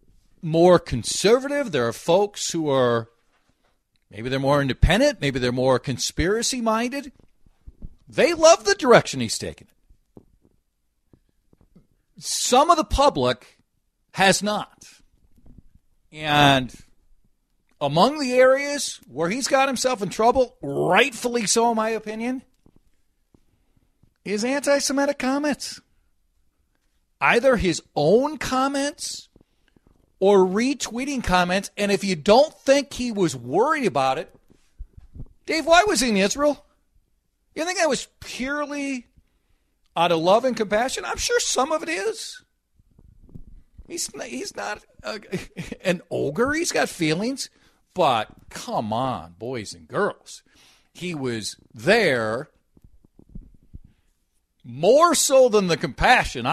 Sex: male